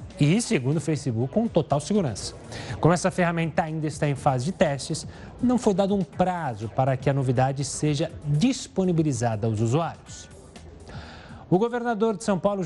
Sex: male